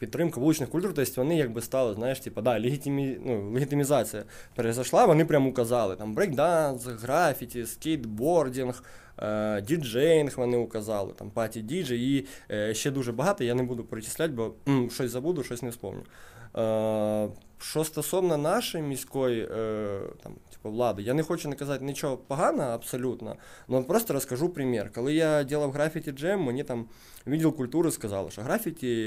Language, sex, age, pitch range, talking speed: Ukrainian, male, 20-39, 110-140 Hz, 155 wpm